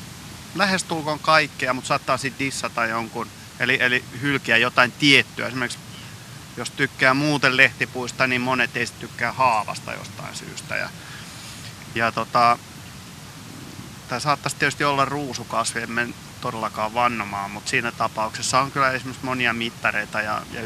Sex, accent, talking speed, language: male, native, 130 wpm, Finnish